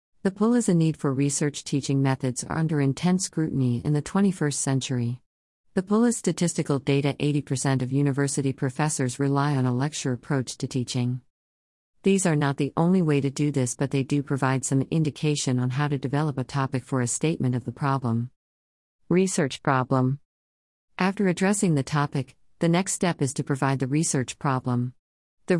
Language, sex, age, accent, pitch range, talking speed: English, female, 40-59, American, 130-160 Hz, 180 wpm